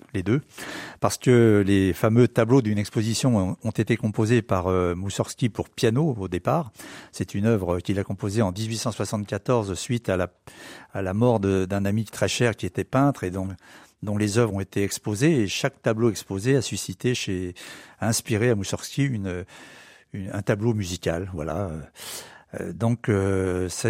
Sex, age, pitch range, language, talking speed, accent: male, 60-79, 100-120 Hz, French, 170 wpm, French